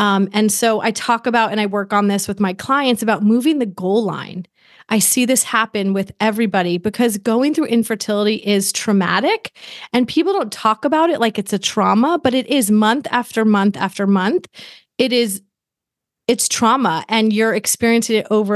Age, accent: 30-49, American